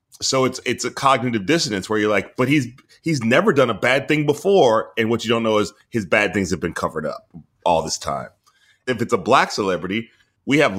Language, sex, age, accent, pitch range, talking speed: English, male, 30-49, American, 100-130 Hz, 230 wpm